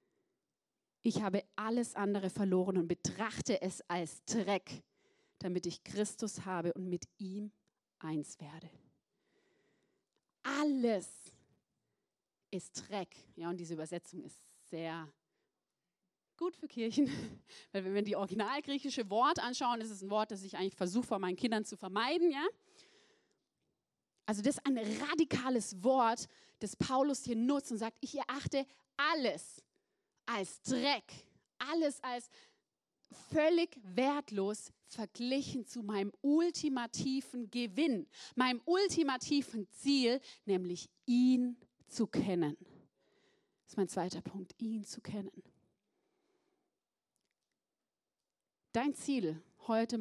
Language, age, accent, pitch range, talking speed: German, 30-49, German, 195-275 Hz, 115 wpm